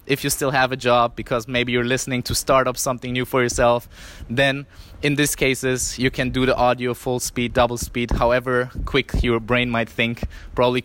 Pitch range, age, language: 105-125 Hz, 20-39, English